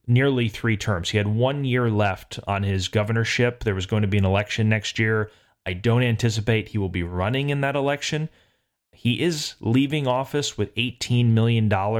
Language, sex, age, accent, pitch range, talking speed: English, male, 30-49, American, 100-125 Hz, 185 wpm